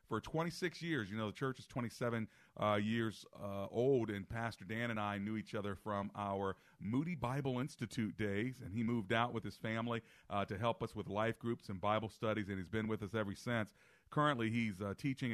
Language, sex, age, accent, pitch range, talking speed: English, male, 40-59, American, 100-115 Hz, 215 wpm